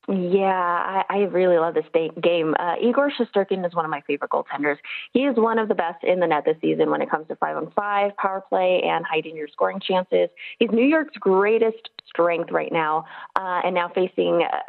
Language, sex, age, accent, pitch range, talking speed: English, female, 20-39, American, 175-245 Hz, 215 wpm